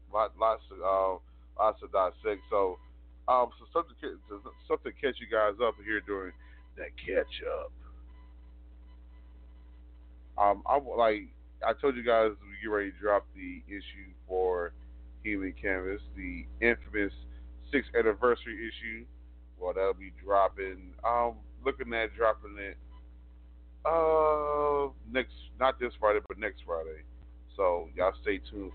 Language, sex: English, male